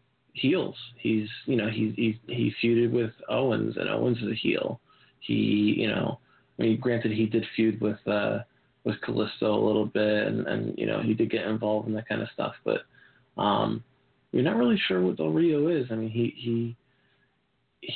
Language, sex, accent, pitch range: English, male, American, 110-125 Hz